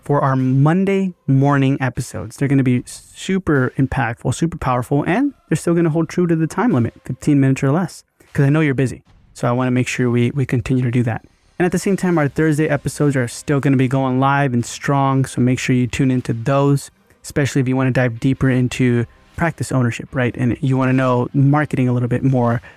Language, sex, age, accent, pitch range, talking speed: English, male, 20-39, American, 130-150 Hz, 235 wpm